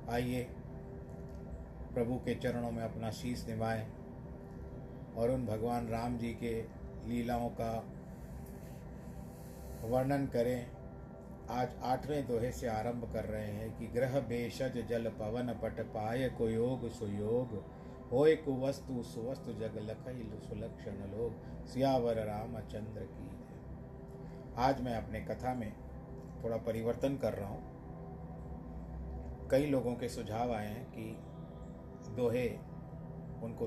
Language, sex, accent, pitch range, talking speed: Hindi, male, native, 105-120 Hz, 120 wpm